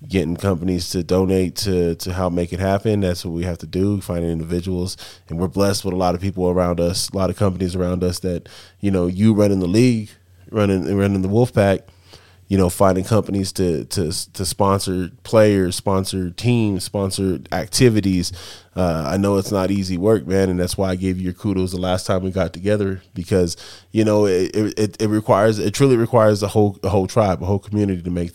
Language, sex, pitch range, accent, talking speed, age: English, male, 90-100 Hz, American, 215 wpm, 20-39